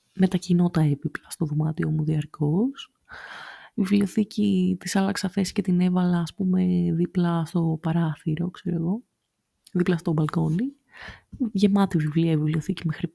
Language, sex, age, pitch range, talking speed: Greek, female, 20-39, 170-215 Hz, 140 wpm